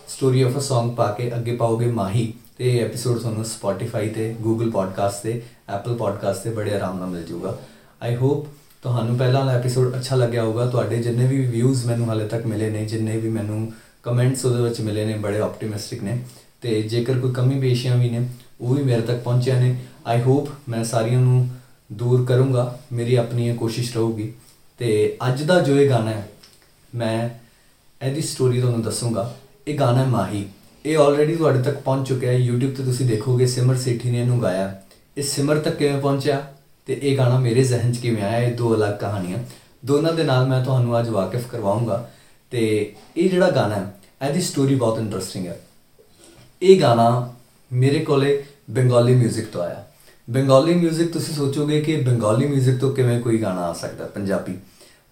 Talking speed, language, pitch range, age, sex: 170 wpm, Punjabi, 115-135 Hz, 20-39, male